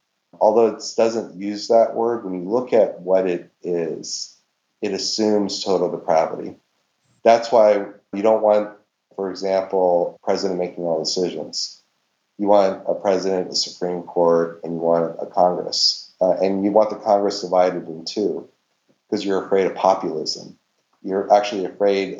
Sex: male